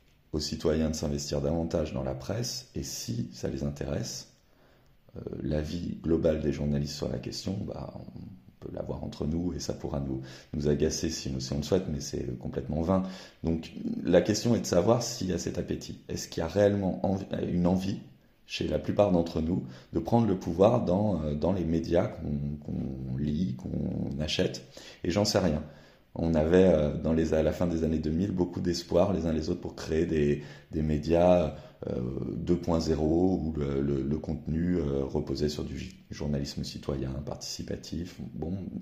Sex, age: male, 30-49